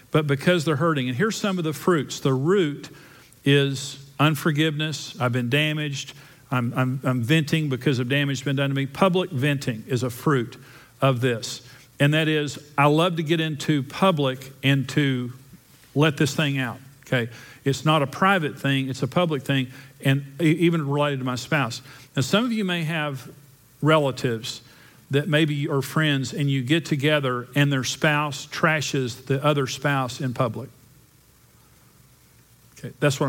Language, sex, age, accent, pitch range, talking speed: English, male, 50-69, American, 130-155 Hz, 170 wpm